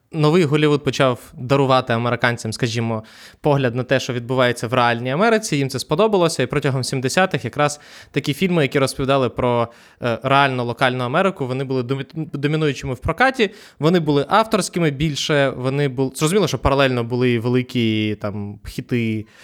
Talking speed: 145 wpm